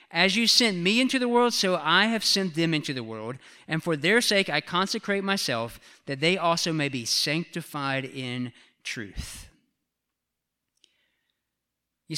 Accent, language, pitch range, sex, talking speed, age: American, English, 145-200 Hz, male, 155 wpm, 40-59